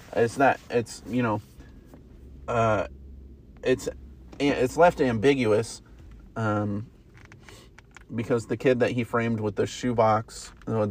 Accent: American